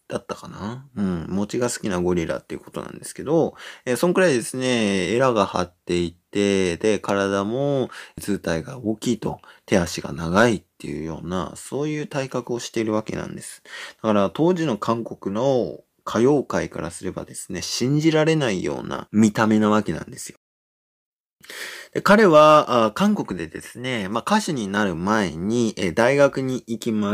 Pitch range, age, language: 90-145 Hz, 20-39, Japanese